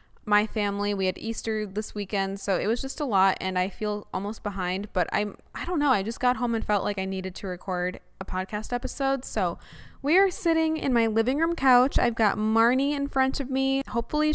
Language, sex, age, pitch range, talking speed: English, female, 10-29, 205-250 Hz, 225 wpm